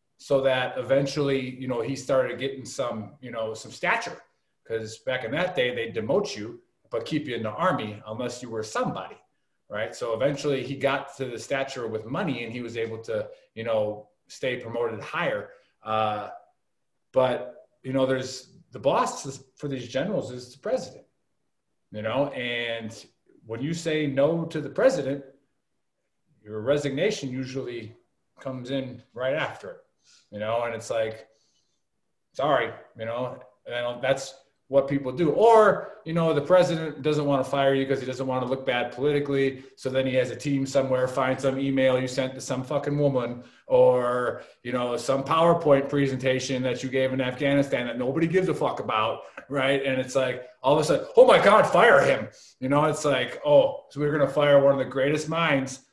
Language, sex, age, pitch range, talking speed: English, male, 30-49, 125-145 Hz, 185 wpm